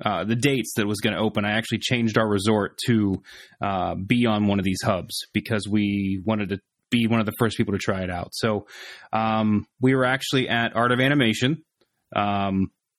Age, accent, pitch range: 30-49, American, 105-120 Hz